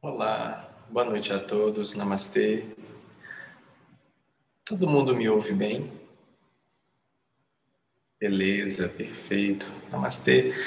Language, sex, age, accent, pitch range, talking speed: Portuguese, male, 20-39, Brazilian, 115-135 Hz, 80 wpm